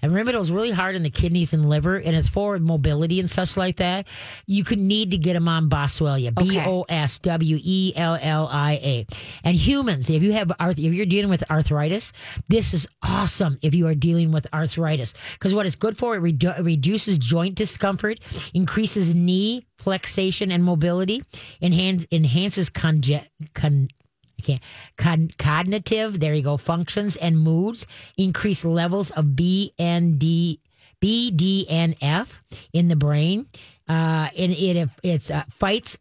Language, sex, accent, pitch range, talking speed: English, female, American, 155-190 Hz, 155 wpm